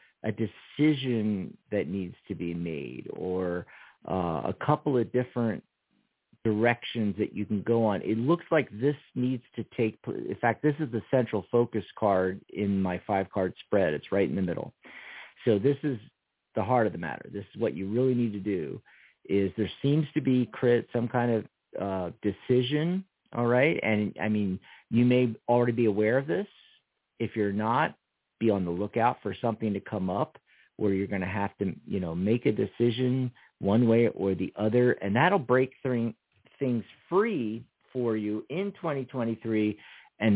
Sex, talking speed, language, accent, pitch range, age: male, 180 wpm, English, American, 105-130 Hz, 50-69